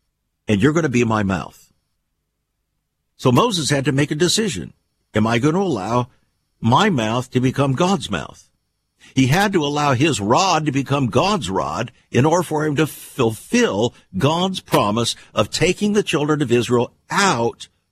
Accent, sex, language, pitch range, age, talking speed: American, male, English, 105-155 Hz, 60-79, 165 wpm